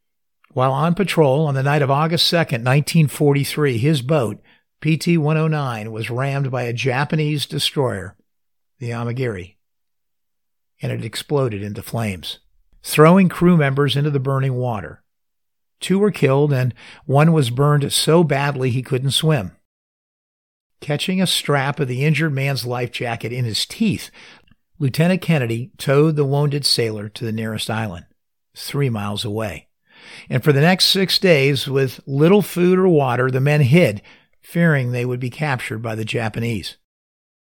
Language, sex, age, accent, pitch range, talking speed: English, male, 50-69, American, 115-150 Hz, 145 wpm